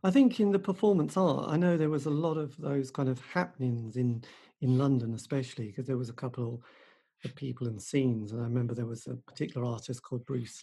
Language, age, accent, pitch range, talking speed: English, 40-59, British, 120-140 Hz, 225 wpm